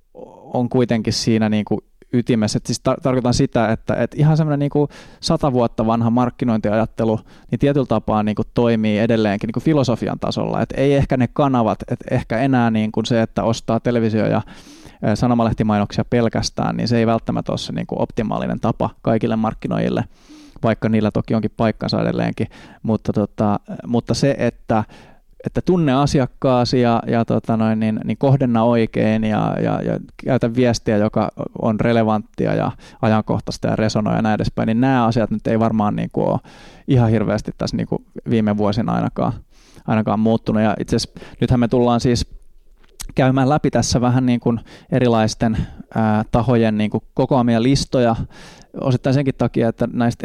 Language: Finnish